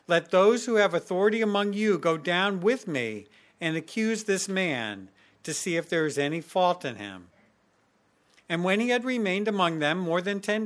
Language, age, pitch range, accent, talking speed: English, 50-69, 160-215 Hz, American, 190 wpm